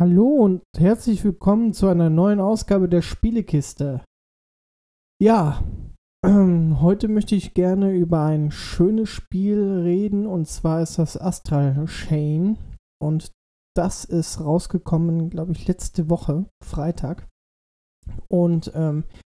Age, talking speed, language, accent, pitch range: 20-39, 120 wpm, German, German, 155-195 Hz